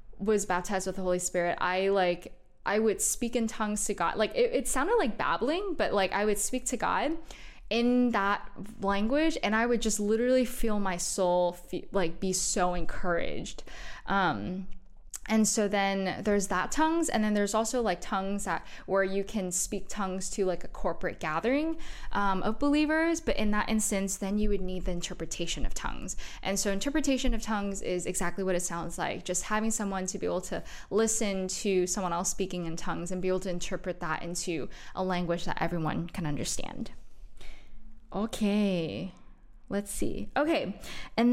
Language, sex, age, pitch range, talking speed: English, female, 10-29, 180-225 Hz, 180 wpm